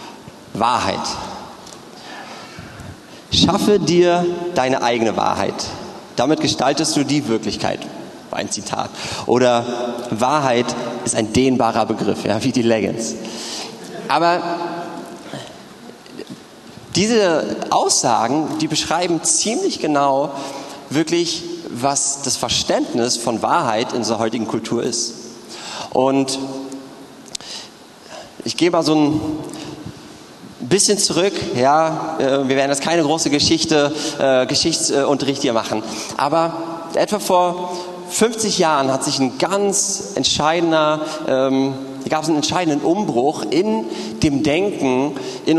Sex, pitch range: male, 130-165 Hz